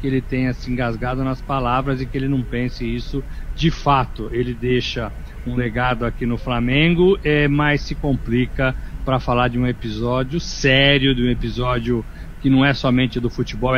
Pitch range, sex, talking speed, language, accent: 120-145 Hz, male, 175 wpm, Portuguese, Brazilian